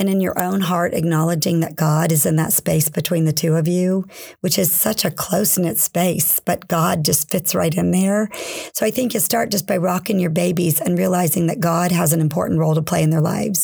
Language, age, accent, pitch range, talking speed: English, 50-69, American, 170-210 Hz, 235 wpm